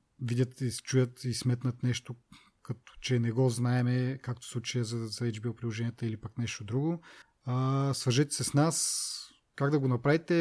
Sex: male